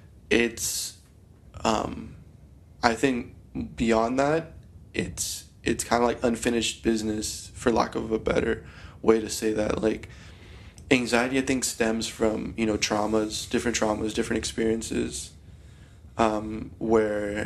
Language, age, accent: English, 20-39, American